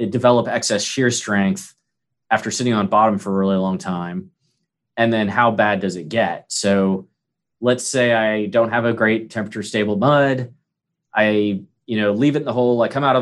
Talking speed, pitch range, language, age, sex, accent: 195 wpm, 105-130 Hz, English, 20-39, male, American